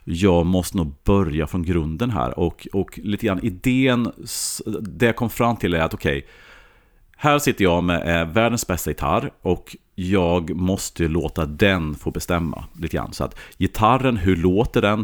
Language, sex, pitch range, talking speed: Swedish, male, 80-100 Hz, 180 wpm